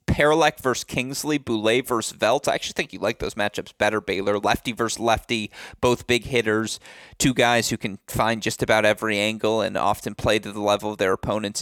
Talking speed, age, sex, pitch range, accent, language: 200 wpm, 30-49, male, 105-135 Hz, American, English